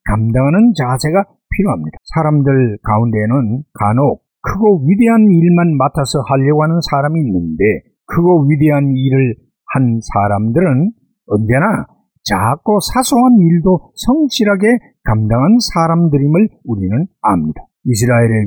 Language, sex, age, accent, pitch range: Korean, male, 50-69, native, 125-185 Hz